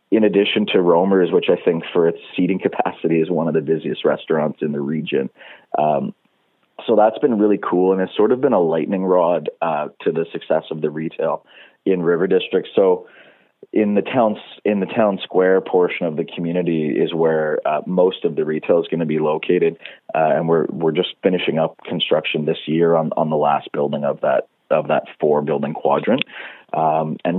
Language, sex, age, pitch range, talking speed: English, male, 30-49, 80-95 Hz, 200 wpm